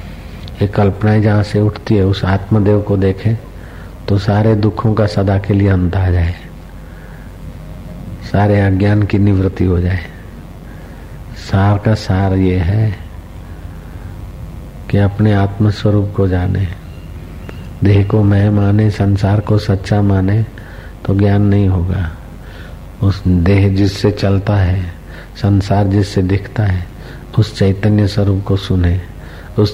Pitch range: 90-105 Hz